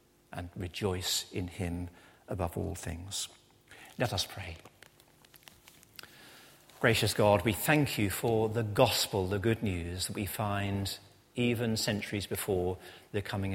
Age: 50-69